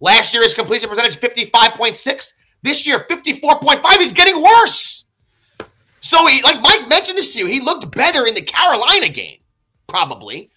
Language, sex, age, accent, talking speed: English, male, 30-49, American, 155 wpm